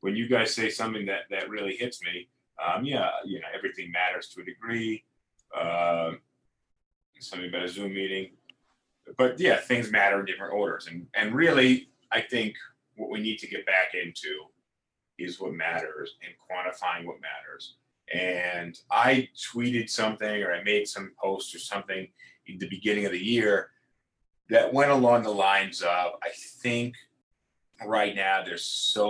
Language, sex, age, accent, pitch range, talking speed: English, male, 30-49, American, 85-110 Hz, 165 wpm